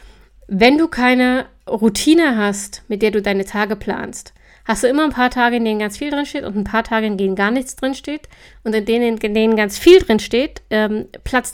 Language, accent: German, German